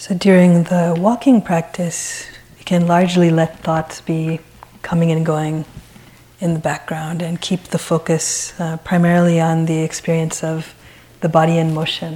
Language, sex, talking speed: English, female, 155 wpm